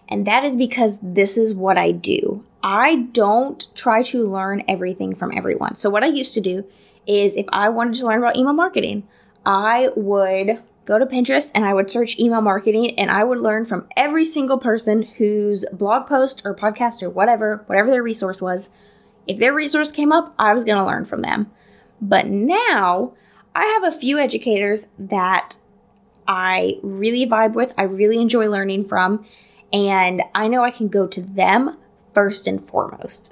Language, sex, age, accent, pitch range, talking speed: English, female, 10-29, American, 200-250 Hz, 180 wpm